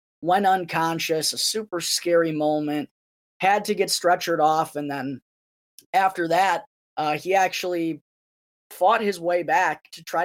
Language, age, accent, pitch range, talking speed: English, 20-39, American, 150-185 Hz, 140 wpm